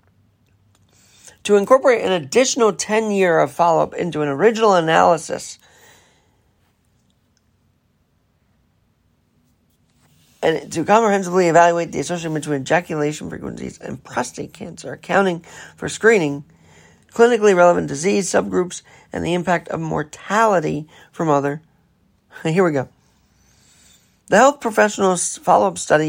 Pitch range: 150-200 Hz